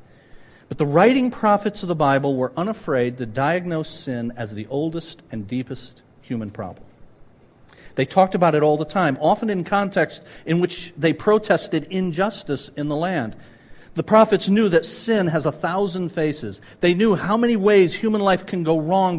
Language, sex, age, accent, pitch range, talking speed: English, male, 50-69, American, 145-200 Hz, 175 wpm